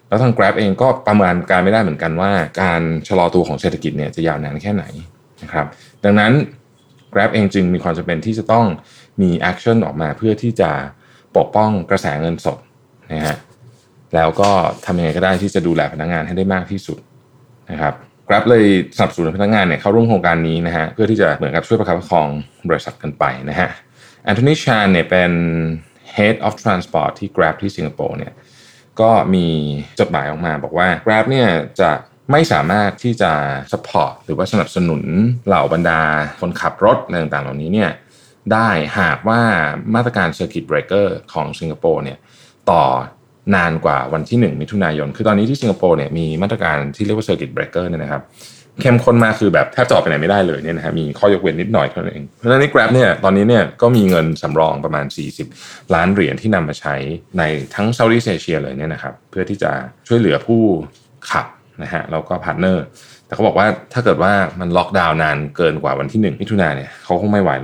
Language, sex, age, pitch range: Thai, male, 20-39, 80-110 Hz